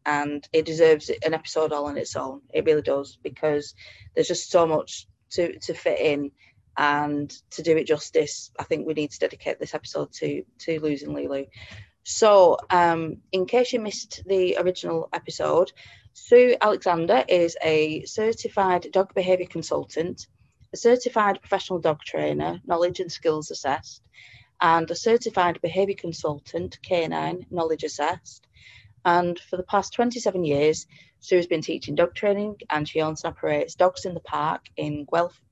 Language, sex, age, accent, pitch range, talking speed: English, female, 30-49, British, 145-185 Hz, 160 wpm